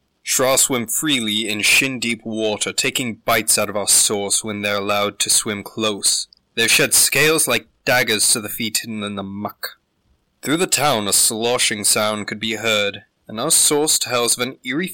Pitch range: 105-135 Hz